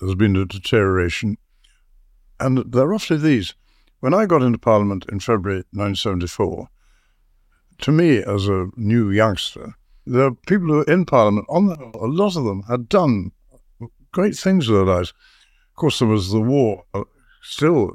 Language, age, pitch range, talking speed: English, 60-79, 100-125 Hz, 160 wpm